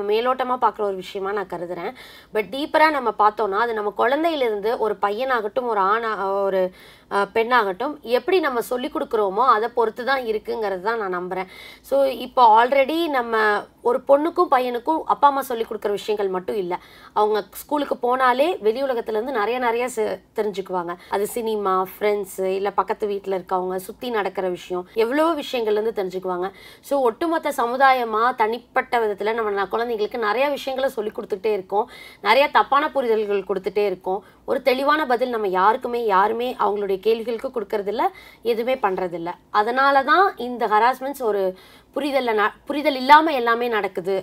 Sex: female